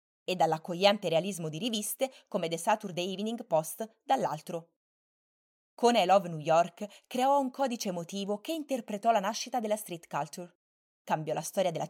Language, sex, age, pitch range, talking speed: Italian, female, 20-39, 170-225 Hz, 155 wpm